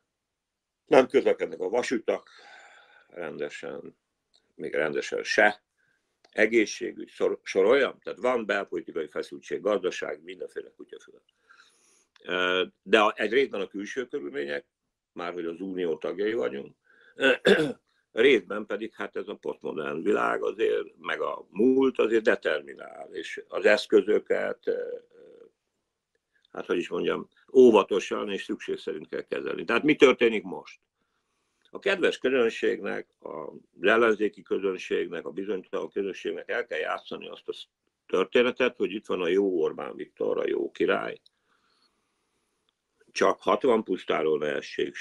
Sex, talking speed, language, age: male, 115 wpm, Hungarian, 60-79